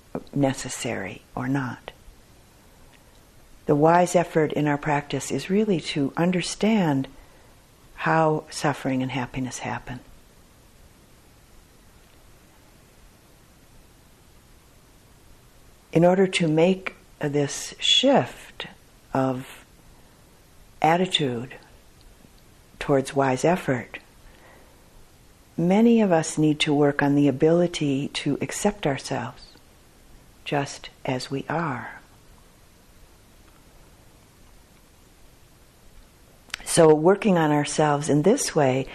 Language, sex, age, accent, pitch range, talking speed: English, female, 60-79, American, 135-170 Hz, 80 wpm